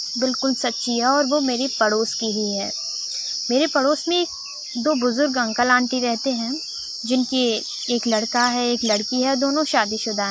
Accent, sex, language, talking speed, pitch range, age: native, female, Hindi, 170 wpm, 225-275 Hz, 20-39